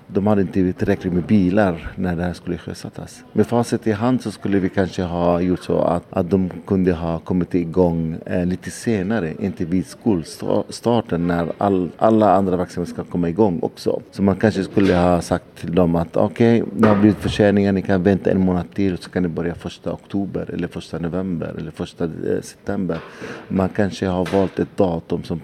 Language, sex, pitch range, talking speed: Swedish, male, 85-100 Hz, 200 wpm